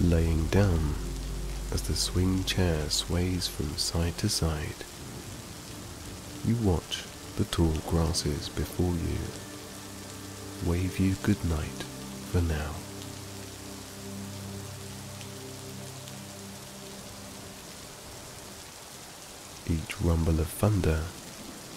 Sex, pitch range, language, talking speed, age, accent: male, 80-100 Hz, English, 75 wpm, 30-49, British